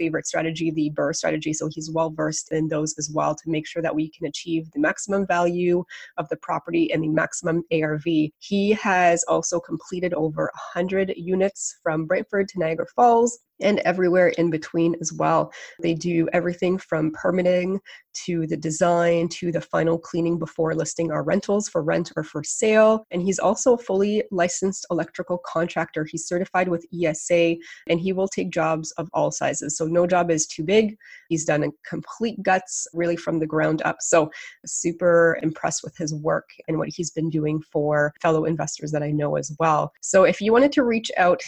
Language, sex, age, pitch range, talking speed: English, female, 20-39, 160-190 Hz, 190 wpm